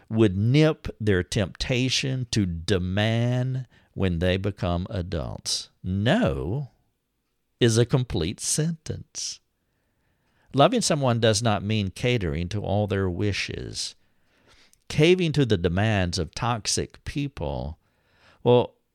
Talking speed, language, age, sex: 105 wpm, English, 50-69, male